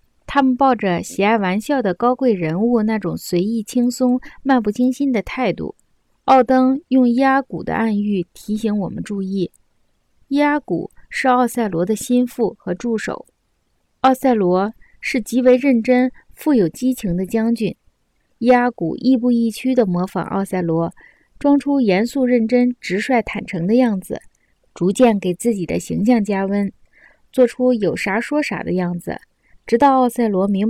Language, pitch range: Chinese, 195-255 Hz